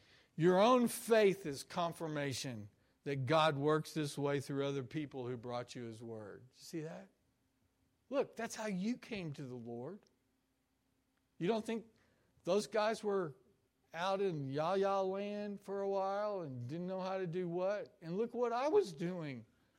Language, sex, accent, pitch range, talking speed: English, male, American, 135-215 Hz, 170 wpm